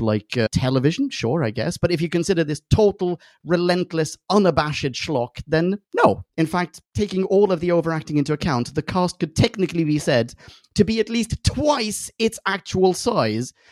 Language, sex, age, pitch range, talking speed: English, male, 30-49, 125-175 Hz, 175 wpm